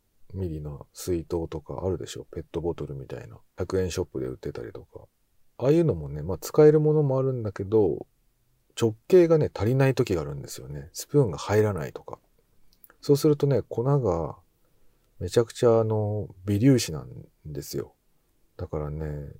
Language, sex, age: Japanese, male, 40-59